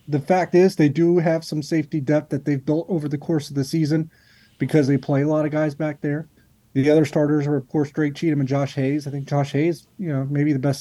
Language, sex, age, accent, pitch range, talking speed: English, male, 30-49, American, 135-160 Hz, 260 wpm